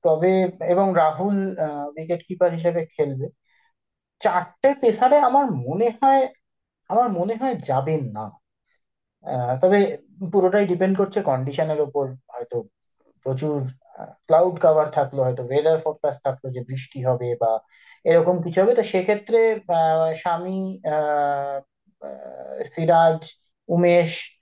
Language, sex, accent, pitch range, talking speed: Bengali, male, native, 145-195 Hz, 110 wpm